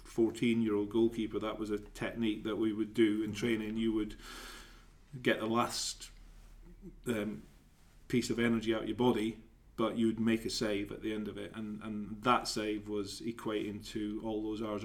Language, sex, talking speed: English, male, 180 wpm